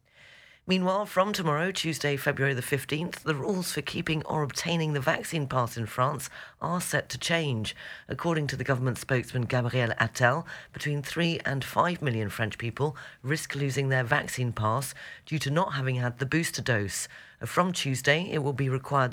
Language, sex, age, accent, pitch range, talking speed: English, female, 40-59, British, 125-150 Hz, 175 wpm